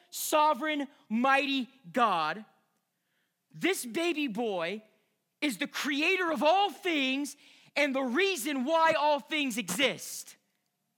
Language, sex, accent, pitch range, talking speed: English, male, American, 170-265 Hz, 105 wpm